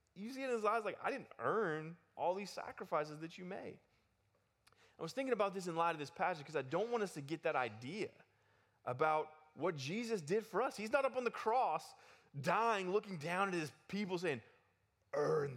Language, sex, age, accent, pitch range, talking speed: English, male, 20-39, American, 120-190 Hz, 210 wpm